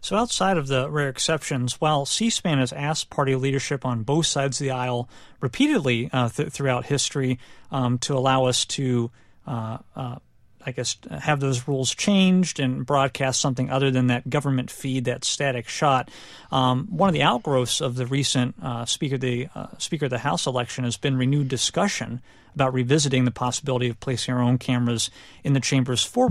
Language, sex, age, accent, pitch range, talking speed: English, male, 40-59, American, 125-145 Hz, 180 wpm